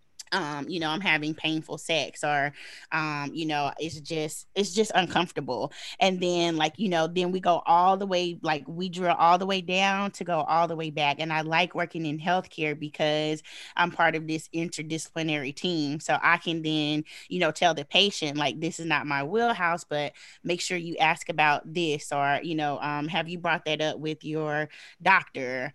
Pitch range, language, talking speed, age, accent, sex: 150-170 Hz, English, 205 wpm, 20-39, American, female